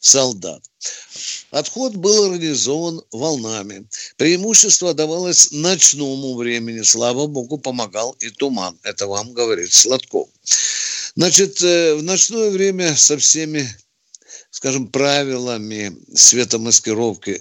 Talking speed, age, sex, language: 95 wpm, 60-79, male, Russian